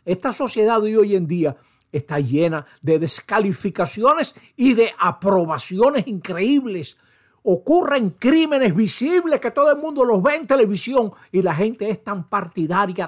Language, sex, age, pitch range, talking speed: Spanish, male, 60-79, 145-205 Hz, 140 wpm